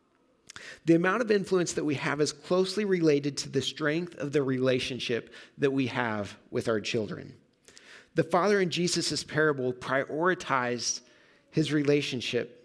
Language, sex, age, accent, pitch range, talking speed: English, male, 40-59, American, 125-175 Hz, 140 wpm